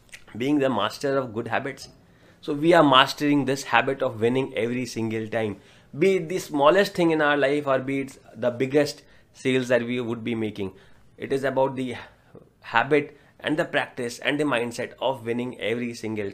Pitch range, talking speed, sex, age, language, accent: 115-150 Hz, 185 wpm, male, 30-49, English, Indian